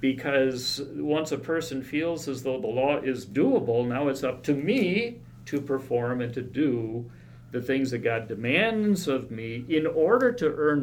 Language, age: English, 50-69